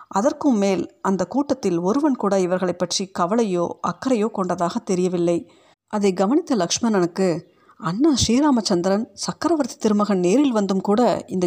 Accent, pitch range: native, 180-235 Hz